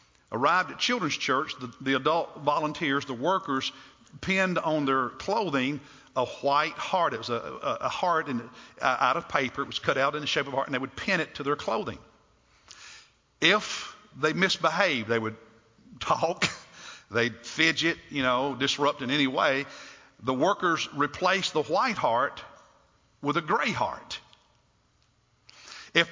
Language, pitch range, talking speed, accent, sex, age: English, 135-180 Hz, 155 wpm, American, male, 50-69